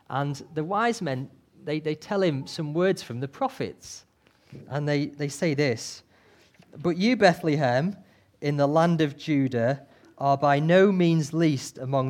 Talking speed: 160 wpm